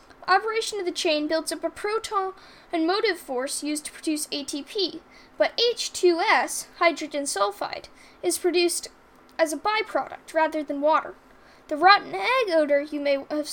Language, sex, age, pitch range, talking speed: English, female, 10-29, 300-395 Hz, 150 wpm